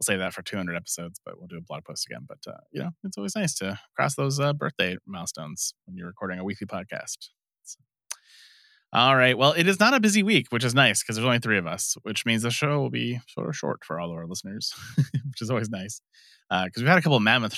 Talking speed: 265 wpm